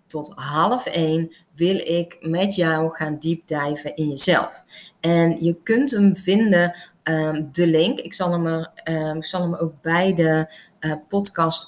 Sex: female